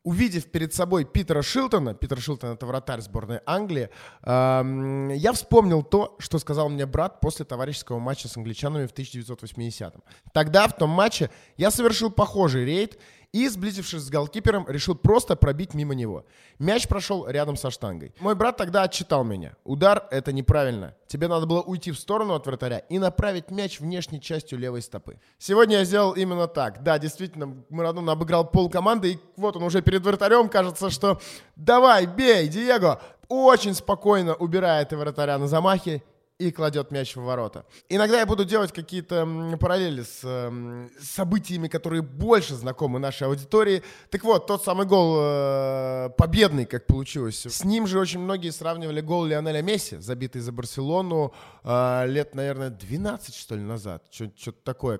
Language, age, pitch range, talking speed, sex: Russian, 20-39, 130-190 Hz, 155 wpm, male